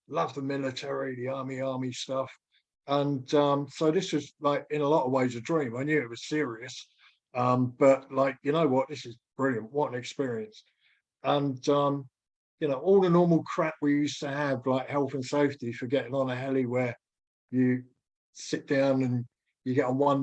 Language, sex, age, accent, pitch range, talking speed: English, male, 50-69, British, 130-145 Hz, 200 wpm